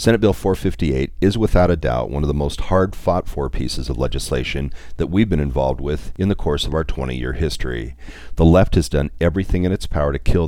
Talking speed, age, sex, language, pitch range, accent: 210 wpm, 40-59, male, English, 70-90 Hz, American